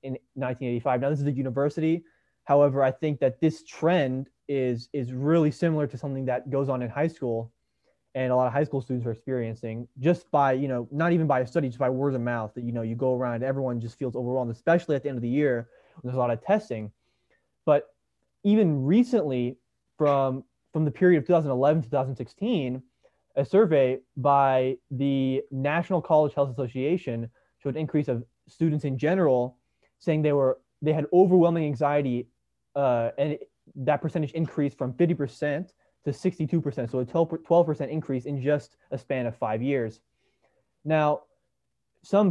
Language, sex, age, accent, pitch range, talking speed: English, male, 20-39, American, 130-160 Hz, 180 wpm